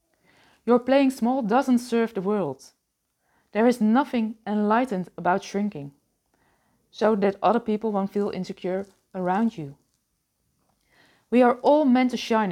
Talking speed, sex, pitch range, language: 135 wpm, female, 185-230 Hz, Dutch